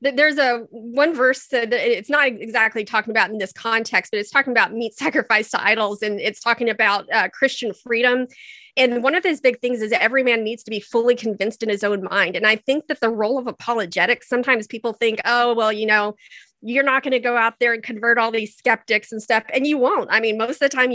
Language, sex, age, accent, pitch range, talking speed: English, female, 30-49, American, 220-265 Hz, 240 wpm